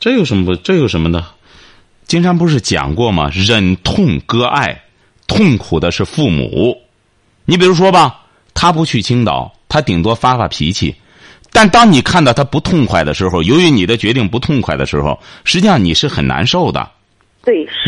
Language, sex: Chinese, male